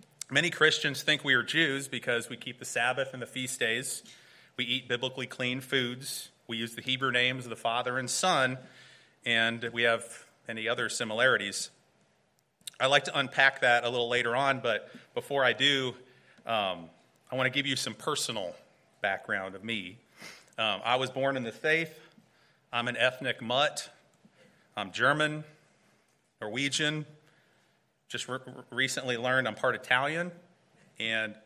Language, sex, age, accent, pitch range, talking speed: English, male, 30-49, American, 120-150 Hz, 155 wpm